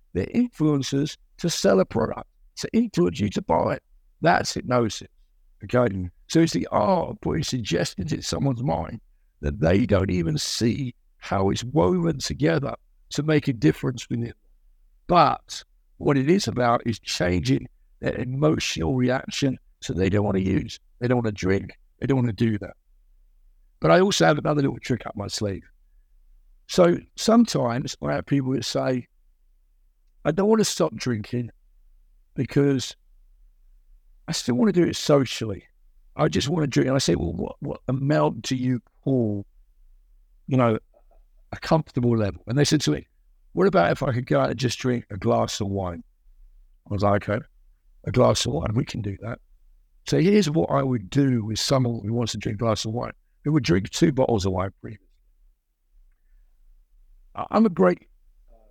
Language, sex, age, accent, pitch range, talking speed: English, male, 60-79, British, 85-135 Hz, 180 wpm